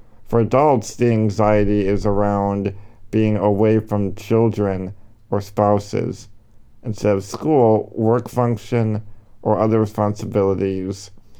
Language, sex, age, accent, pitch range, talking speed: English, male, 50-69, American, 100-115 Hz, 105 wpm